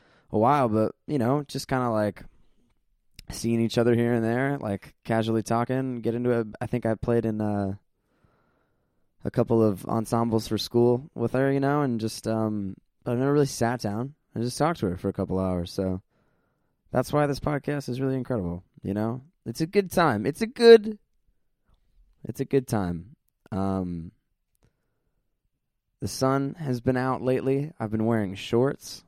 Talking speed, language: 175 wpm, English